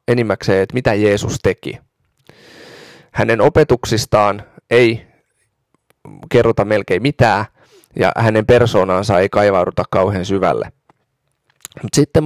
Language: Finnish